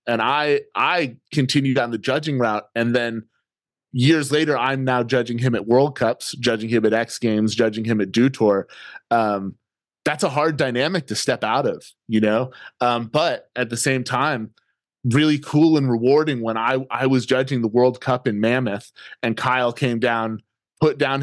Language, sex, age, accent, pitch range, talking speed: English, male, 20-39, American, 115-135 Hz, 185 wpm